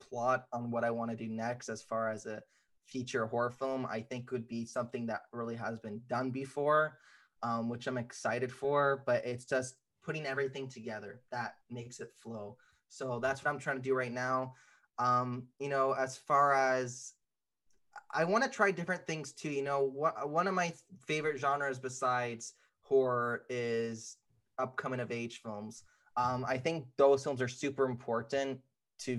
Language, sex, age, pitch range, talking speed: English, male, 20-39, 115-135 Hz, 180 wpm